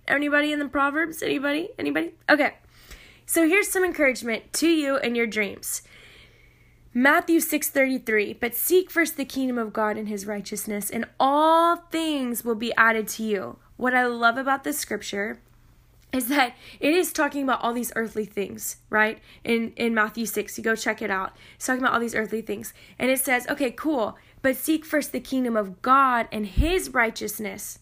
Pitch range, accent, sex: 220-285 Hz, American, female